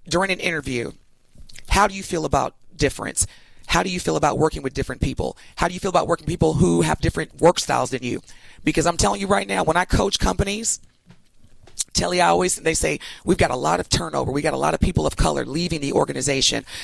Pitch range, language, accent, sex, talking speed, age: 150-205 Hz, English, American, female, 235 wpm, 30-49